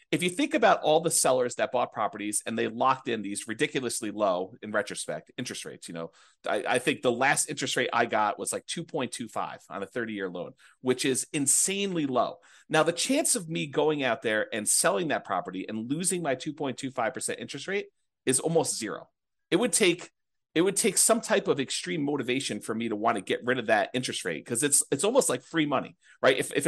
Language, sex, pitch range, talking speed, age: English, male, 125-195 Hz, 215 wpm, 40-59